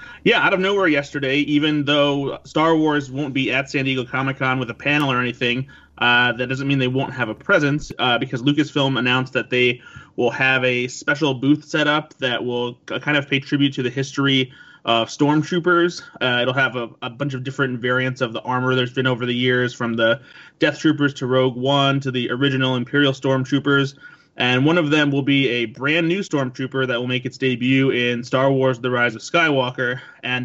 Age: 30-49